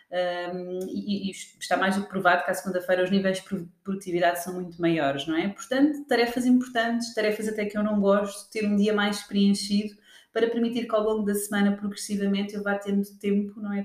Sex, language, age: female, Portuguese, 30-49